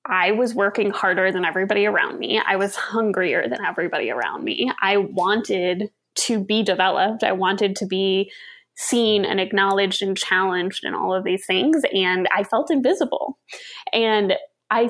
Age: 10-29